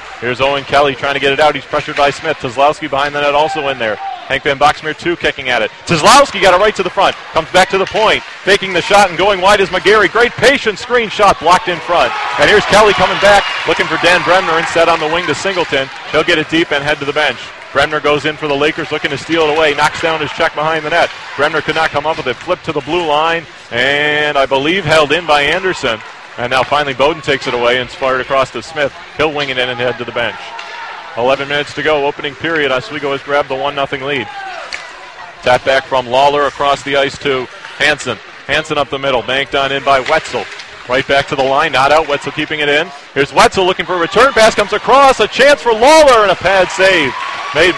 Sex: male